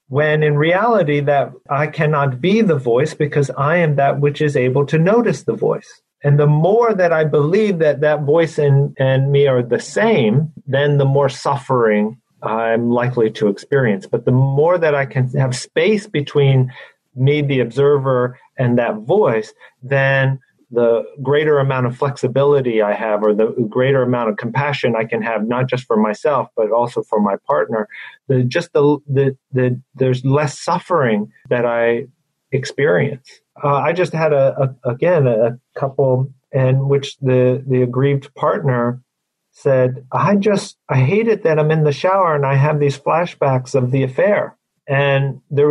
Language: English